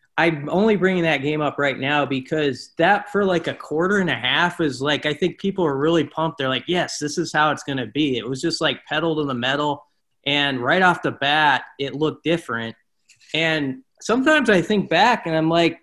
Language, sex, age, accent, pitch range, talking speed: English, male, 30-49, American, 130-160 Hz, 225 wpm